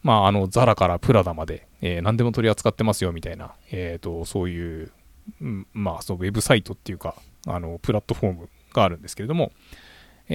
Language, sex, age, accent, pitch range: Japanese, male, 20-39, native, 95-125 Hz